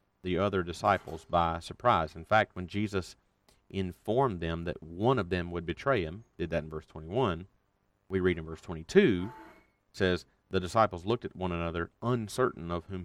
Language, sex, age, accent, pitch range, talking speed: English, male, 40-59, American, 90-105 Hz, 175 wpm